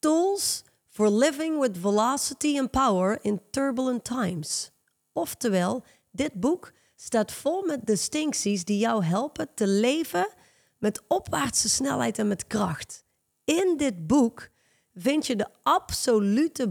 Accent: Dutch